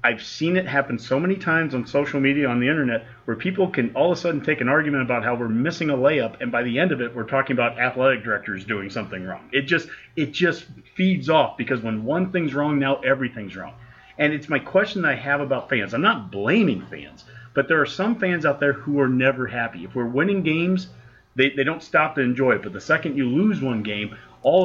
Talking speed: 245 wpm